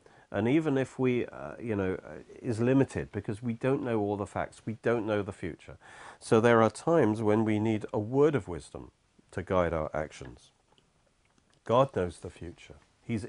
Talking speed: 185 wpm